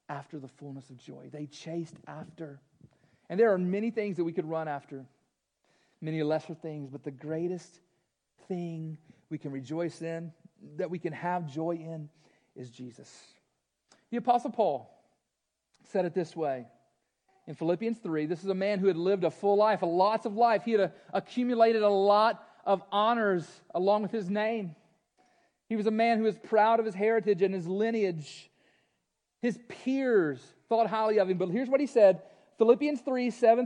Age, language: 40-59, English